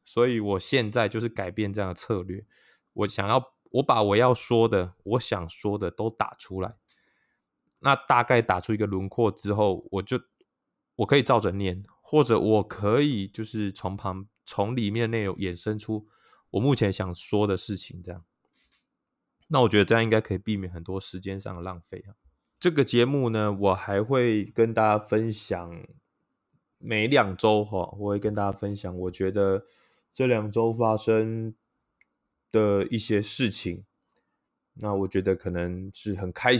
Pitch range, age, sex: 95-115 Hz, 20-39, male